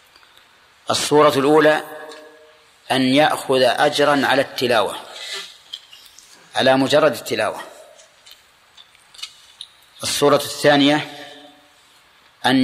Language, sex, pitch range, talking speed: Arabic, male, 130-150 Hz, 60 wpm